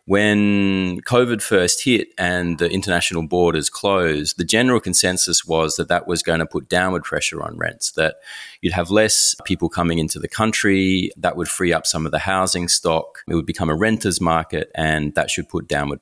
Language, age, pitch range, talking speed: English, 30-49, 80-100 Hz, 195 wpm